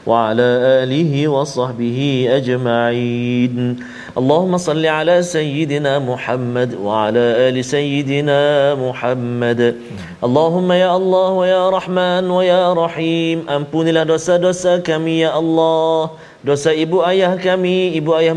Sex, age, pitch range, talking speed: male, 40-59, 140-180 Hz, 35 wpm